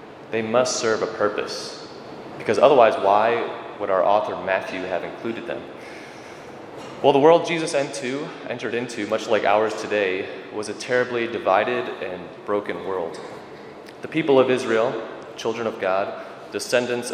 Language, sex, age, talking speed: English, male, 20-39, 140 wpm